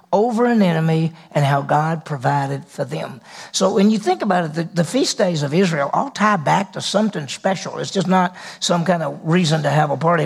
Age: 50-69